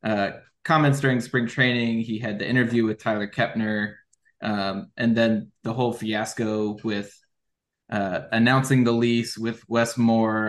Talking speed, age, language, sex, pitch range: 150 wpm, 20-39, English, male, 110-120 Hz